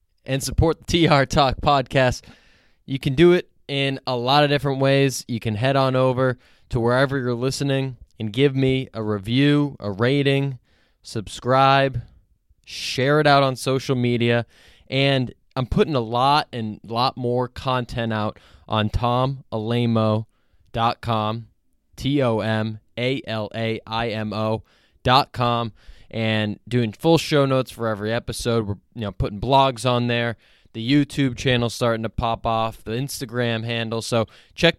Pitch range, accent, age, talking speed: 110-135 Hz, American, 20-39, 140 wpm